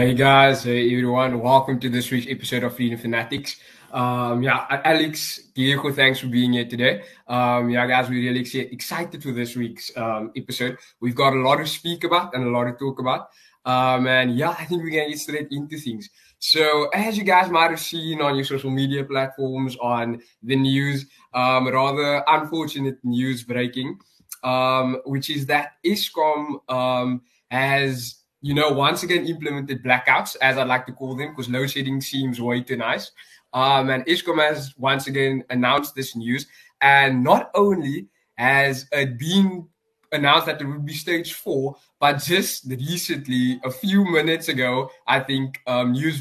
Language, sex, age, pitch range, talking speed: English, male, 20-39, 125-155 Hz, 175 wpm